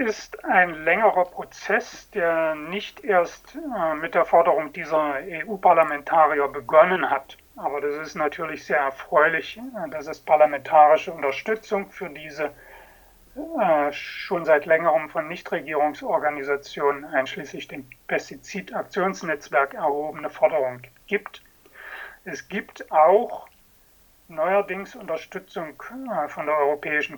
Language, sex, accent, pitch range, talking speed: German, male, German, 150-195 Hz, 105 wpm